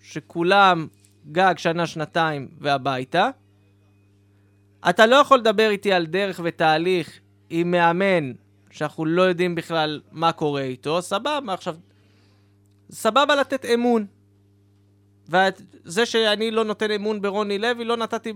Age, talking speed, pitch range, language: 20-39, 120 wpm, 140-220 Hz, Hebrew